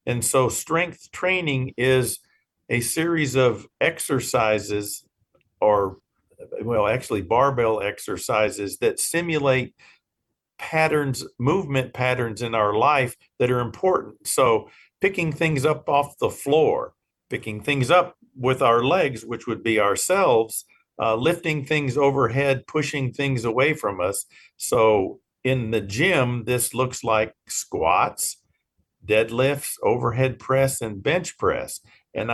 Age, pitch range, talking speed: 50-69, 110-145 Hz, 125 wpm